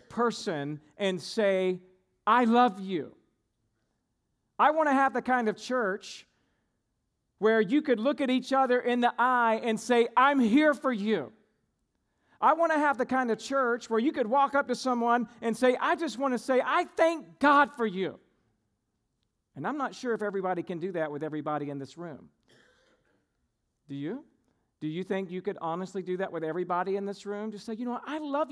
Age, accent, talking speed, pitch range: 40-59, American, 195 wpm, 190-260 Hz